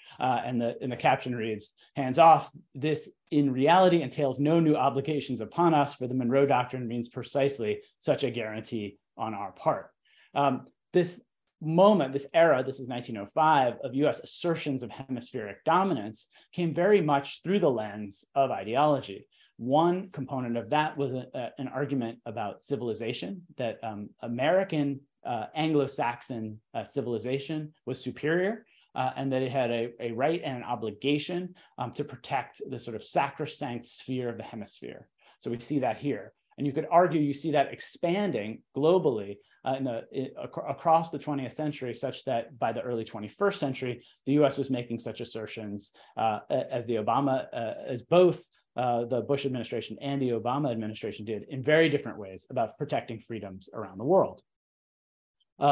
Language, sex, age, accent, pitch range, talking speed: English, male, 30-49, American, 120-150 Hz, 170 wpm